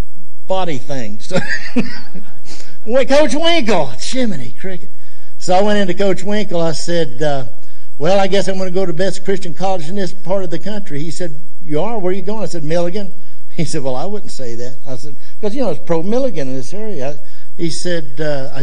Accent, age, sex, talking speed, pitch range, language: American, 60-79, male, 215 wpm, 105-165 Hz, English